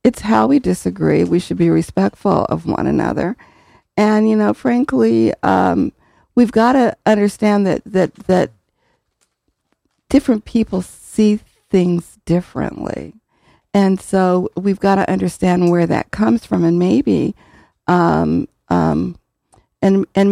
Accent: American